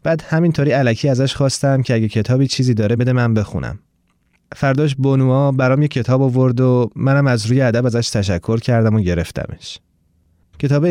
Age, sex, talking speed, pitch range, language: 30-49, male, 165 wpm, 110-145 Hz, Persian